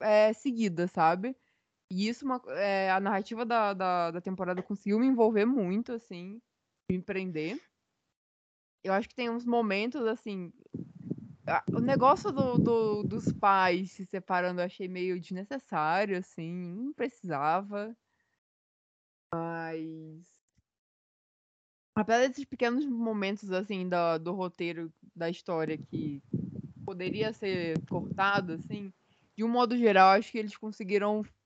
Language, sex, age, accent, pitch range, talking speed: Portuguese, female, 20-39, Brazilian, 185-225 Hz, 130 wpm